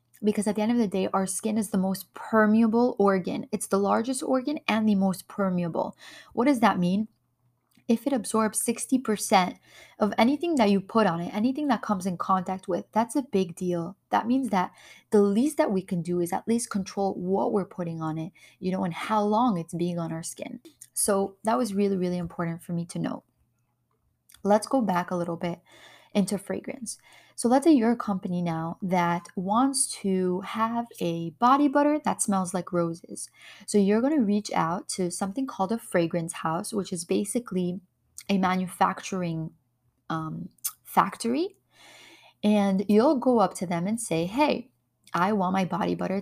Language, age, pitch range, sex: English, 20-39, 180-230 Hz, female